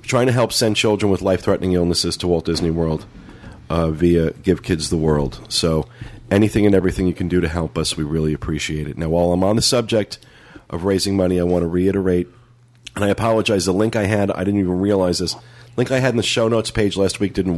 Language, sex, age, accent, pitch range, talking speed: English, male, 40-59, American, 90-115 Hz, 230 wpm